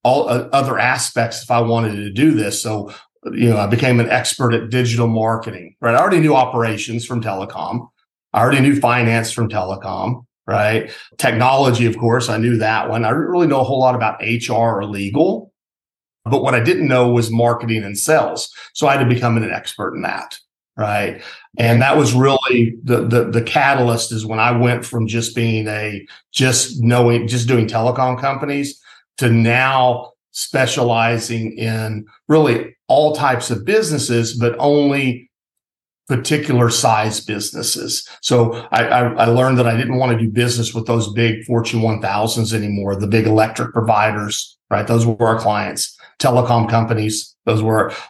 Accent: American